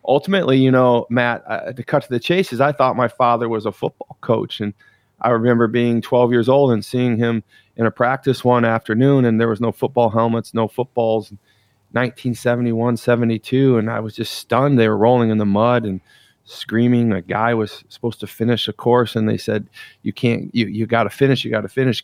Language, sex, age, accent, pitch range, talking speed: English, male, 40-59, American, 115-140 Hz, 210 wpm